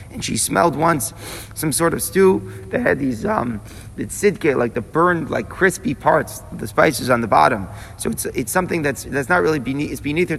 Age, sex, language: 30-49, male, English